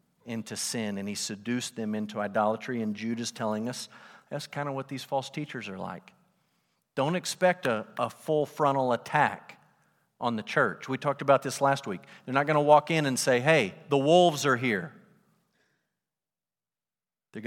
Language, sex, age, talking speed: English, male, 50-69, 175 wpm